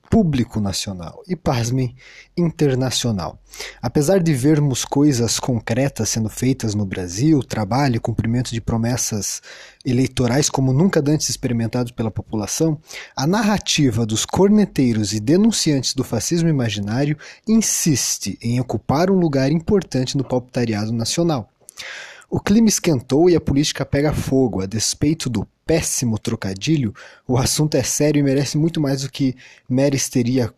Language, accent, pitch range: Portuguese, Brazilian, 120-160 Hz